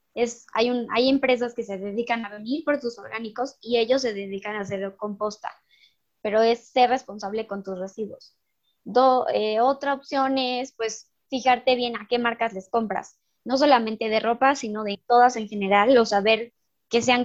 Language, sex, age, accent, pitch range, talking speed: Spanish, male, 20-39, Mexican, 215-245 Hz, 175 wpm